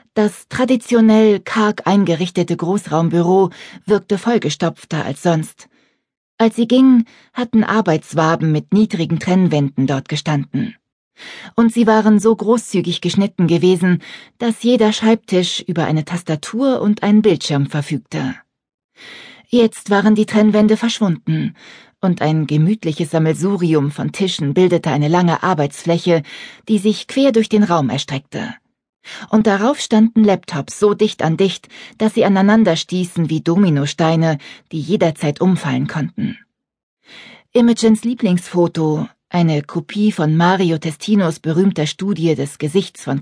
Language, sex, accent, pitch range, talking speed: German, female, German, 160-215 Hz, 120 wpm